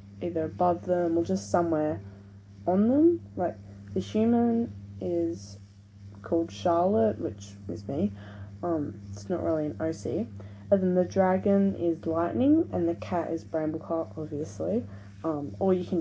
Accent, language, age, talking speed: Australian, English, 10-29, 145 wpm